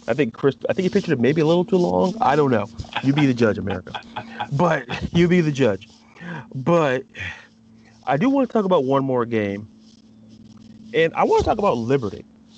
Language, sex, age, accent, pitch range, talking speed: English, male, 30-49, American, 105-155 Hz, 205 wpm